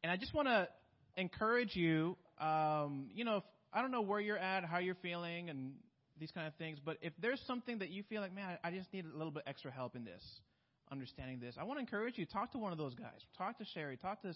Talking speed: 255 wpm